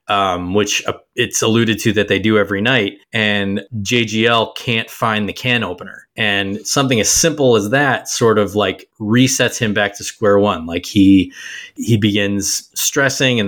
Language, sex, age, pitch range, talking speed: English, male, 20-39, 100-120 Hz, 175 wpm